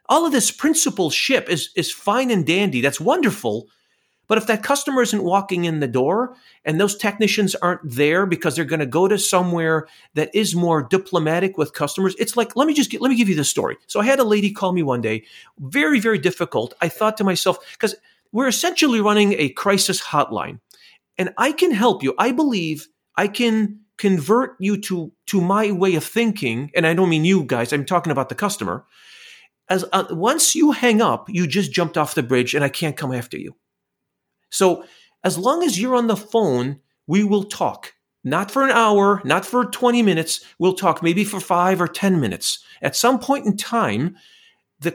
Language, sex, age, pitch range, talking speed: English, male, 40-59, 170-235 Hz, 205 wpm